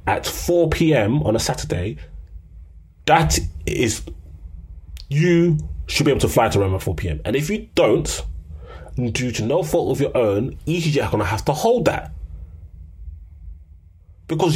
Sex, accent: male, British